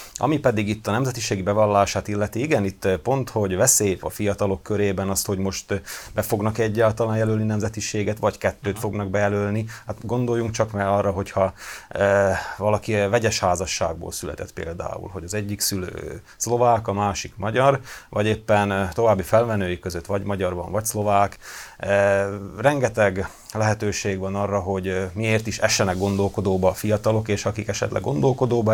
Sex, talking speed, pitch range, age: male, 155 wpm, 100-115 Hz, 30-49